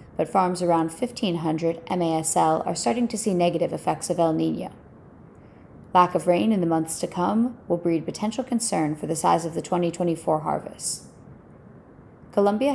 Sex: female